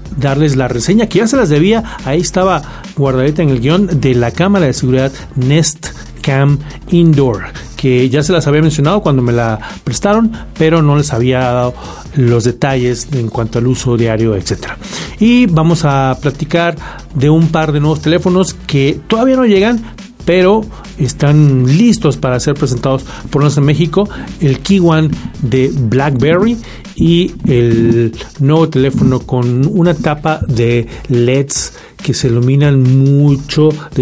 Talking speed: 155 wpm